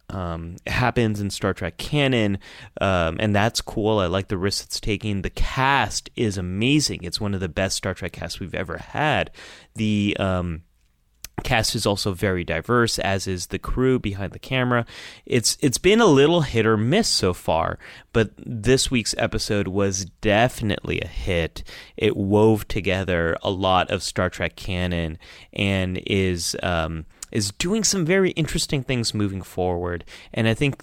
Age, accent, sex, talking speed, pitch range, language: 30-49, American, male, 165 wpm, 90-115 Hz, English